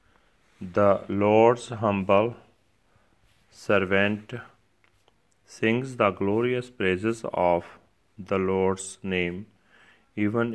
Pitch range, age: 95-110 Hz, 40-59